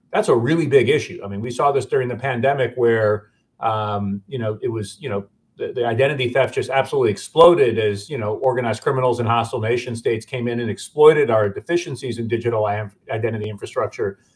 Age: 40-59